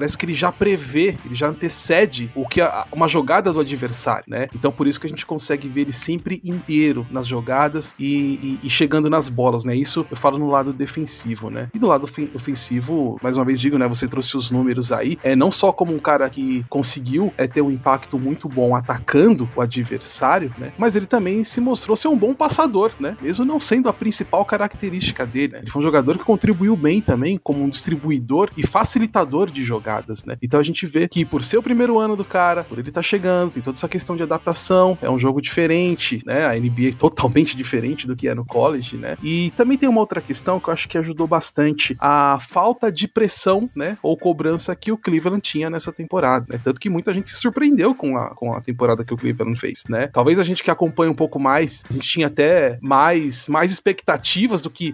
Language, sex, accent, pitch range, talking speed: Portuguese, male, Brazilian, 135-180 Hz, 225 wpm